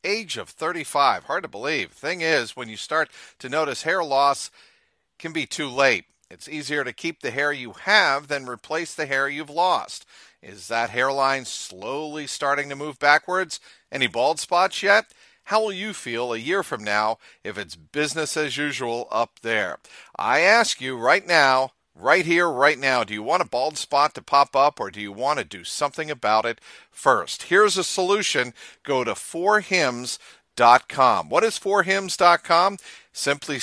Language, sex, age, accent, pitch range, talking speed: English, male, 50-69, American, 125-170 Hz, 175 wpm